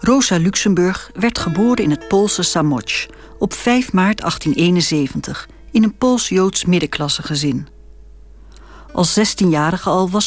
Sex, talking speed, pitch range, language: female, 125 wpm, 160-225 Hz, Dutch